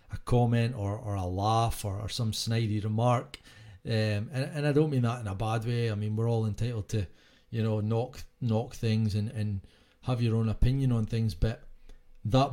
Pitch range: 105-125 Hz